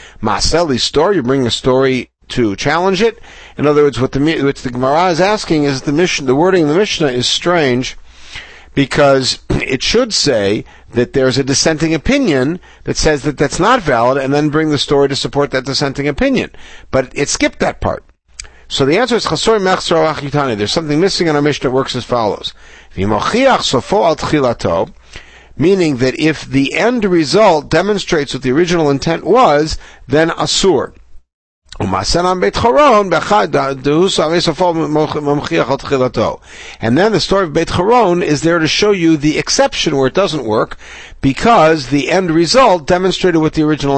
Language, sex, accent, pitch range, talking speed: English, male, American, 135-175 Hz, 155 wpm